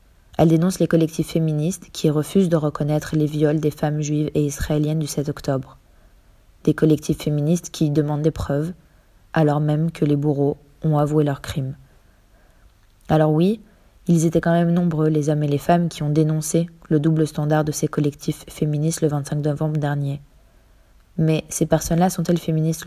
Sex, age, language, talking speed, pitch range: female, 20-39, French, 175 wpm, 145-165 Hz